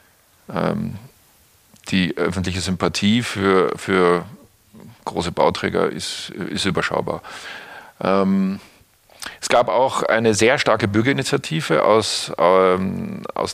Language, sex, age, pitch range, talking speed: German, male, 40-59, 95-120 Hz, 85 wpm